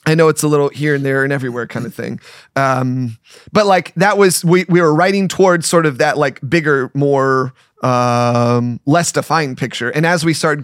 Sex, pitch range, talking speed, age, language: male, 135-165 Hz, 210 wpm, 30-49, English